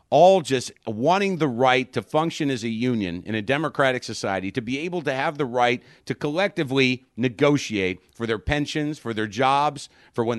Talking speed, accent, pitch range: 185 wpm, American, 110-150 Hz